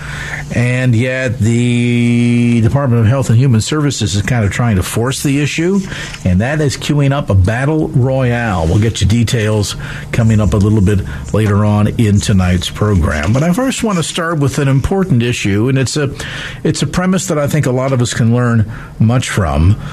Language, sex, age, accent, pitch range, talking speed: English, male, 50-69, American, 115-155 Hz, 200 wpm